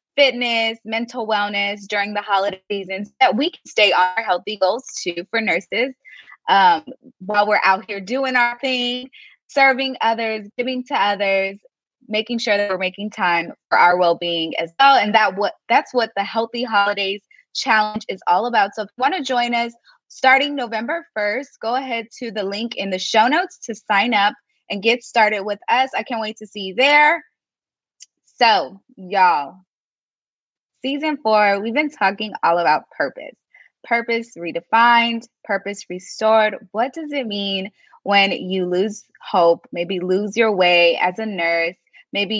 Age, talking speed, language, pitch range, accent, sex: 20-39, 170 wpm, English, 190-245 Hz, American, female